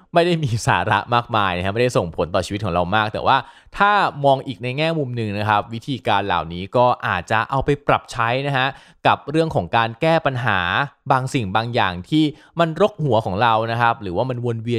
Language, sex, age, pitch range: Thai, male, 20-39, 100-140 Hz